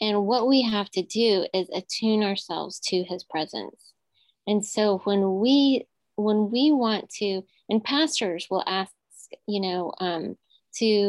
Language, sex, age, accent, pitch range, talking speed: English, female, 20-39, American, 180-225 Hz, 150 wpm